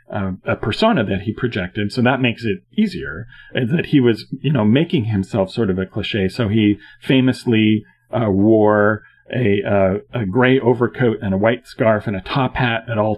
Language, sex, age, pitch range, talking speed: English, male, 40-59, 100-125 Hz, 190 wpm